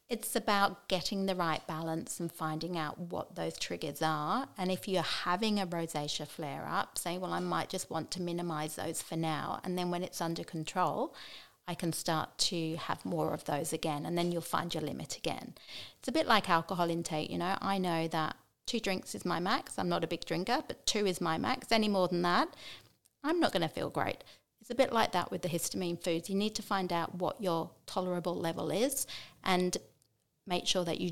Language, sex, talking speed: English, female, 220 wpm